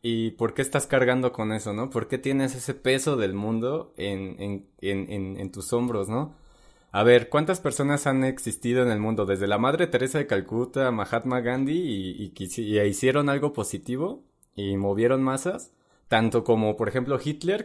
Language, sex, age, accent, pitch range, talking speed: Spanish, male, 20-39, Mexican, 110-140 Hz, 180 wpm